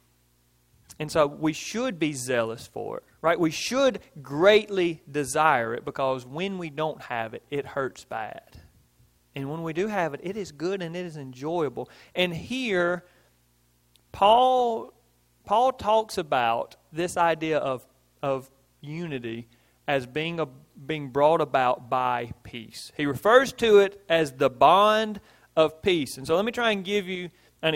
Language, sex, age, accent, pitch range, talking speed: English, male, 40-59, American, 140-210 Hz, 160 wpm